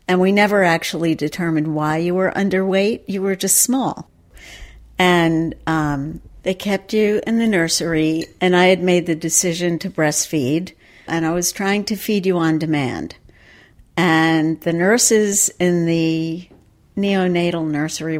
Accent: American